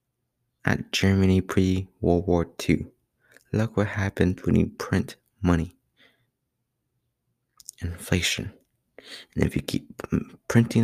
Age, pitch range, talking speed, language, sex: 20-39, 90-120 Hz, 100 wpm, English, male